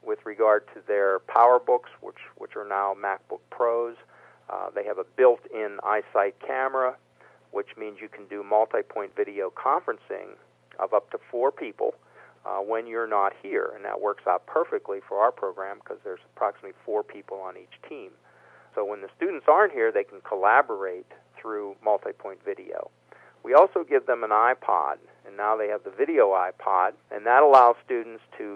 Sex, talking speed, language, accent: male, 170 wpm, English, American